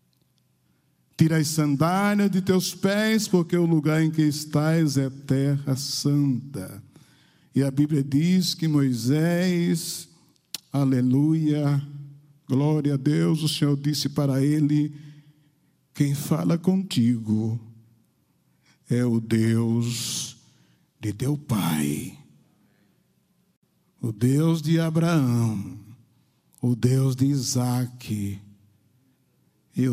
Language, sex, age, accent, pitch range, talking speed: Portuguese, male, 60-79, Brazilian, 125-170 Hz, 95 wpm